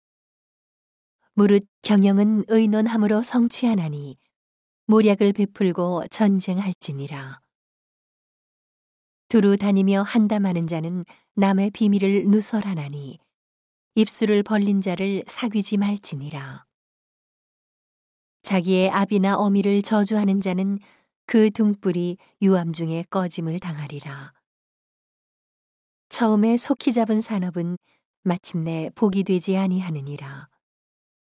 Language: Korean